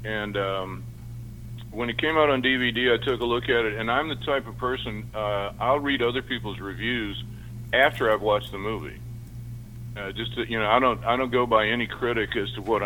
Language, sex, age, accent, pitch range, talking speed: English, male, 50-69, American, 110-120 Hz, 220 wpm